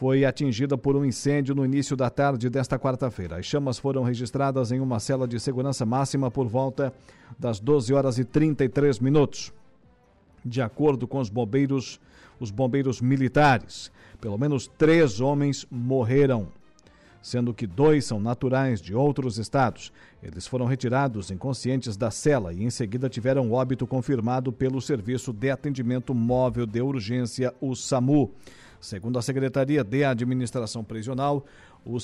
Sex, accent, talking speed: male, Brazilian, 145 wpm